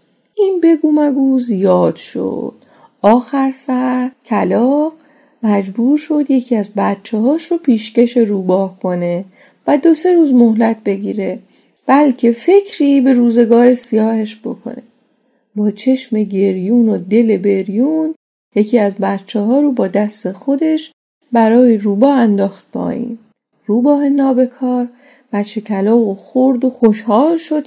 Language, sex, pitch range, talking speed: Persian, female, 220-285 Hz, 125 wpm